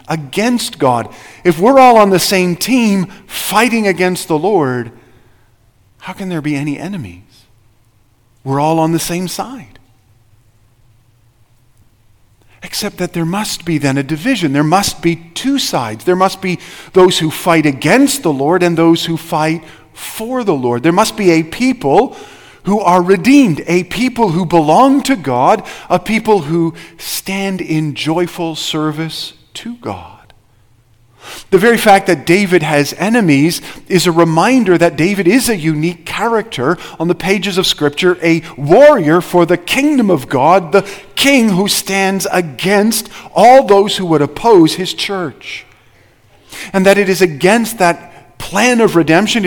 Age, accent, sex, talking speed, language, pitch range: 40-59, American, male, 155 wpm, English, 145-195 Hz